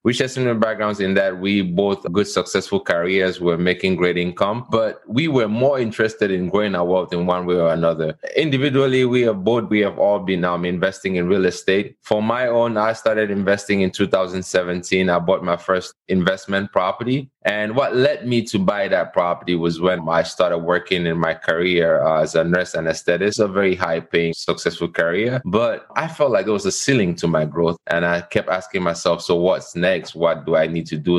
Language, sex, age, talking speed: English, male, 20-39, 210 wpm